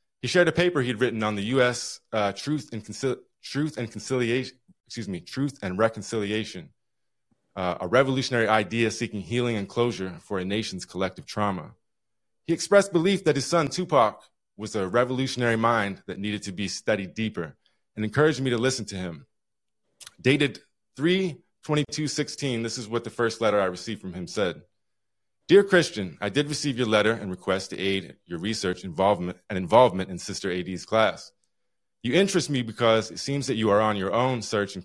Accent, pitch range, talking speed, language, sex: American, 100-135 Hz, 185 wpm, English, male